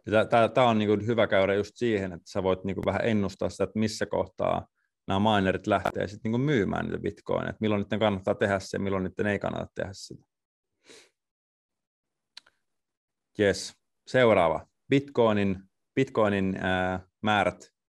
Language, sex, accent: Finnish, male, native